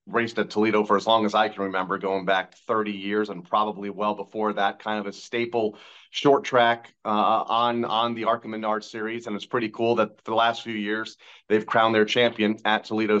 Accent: American